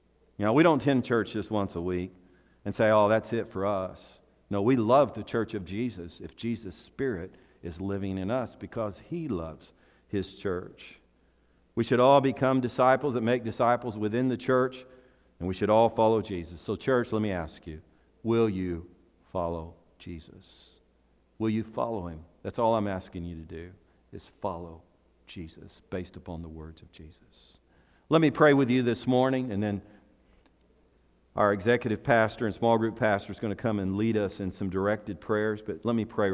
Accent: American